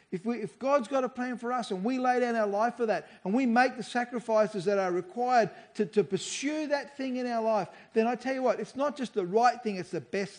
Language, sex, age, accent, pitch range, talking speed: English, male, 40-59, Australian, 185-240 Hz, 270 wpm